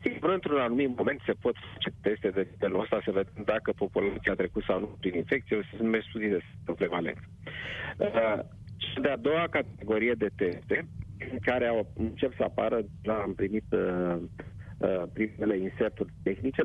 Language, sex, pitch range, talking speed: Romanian, male, 100-120 Hz, 150 wpm